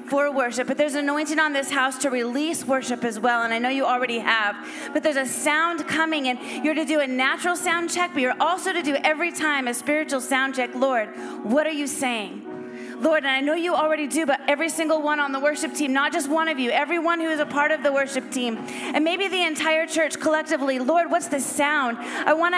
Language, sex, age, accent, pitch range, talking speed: English, female, 30-49, American, 265-320 Hz, 230 wpm